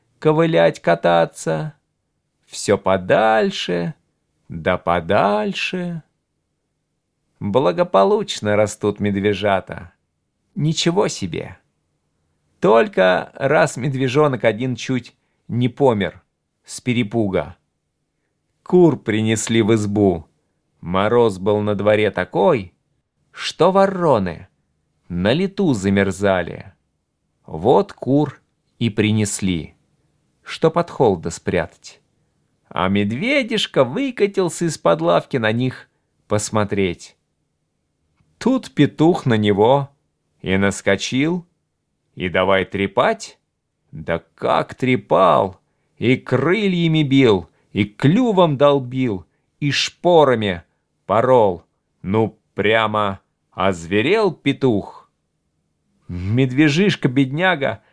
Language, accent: Russian, native